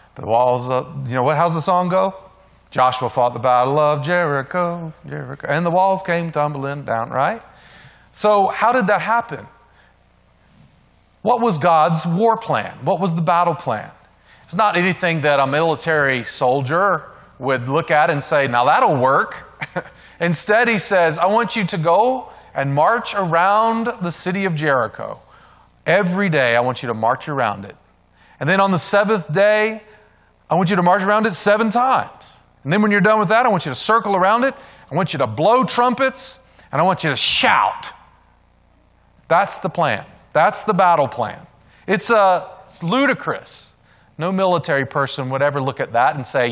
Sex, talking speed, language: male, 180 wpm, English